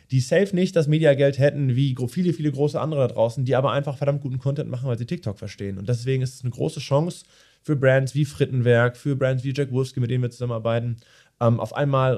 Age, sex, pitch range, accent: 20-39, male, 125-145 Hz, German